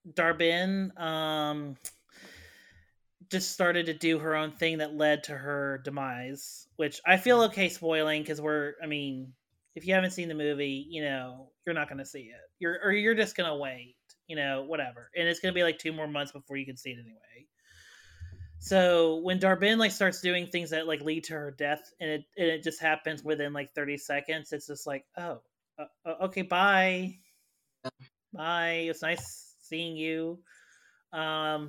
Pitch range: 150-180 Hz